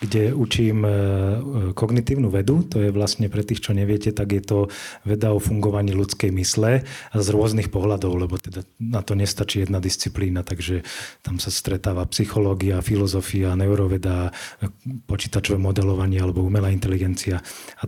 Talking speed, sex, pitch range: 140 wpm, male, 100-115 Hz